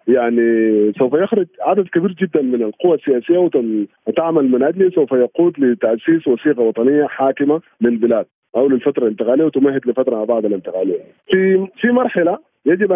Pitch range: 120-175 Hz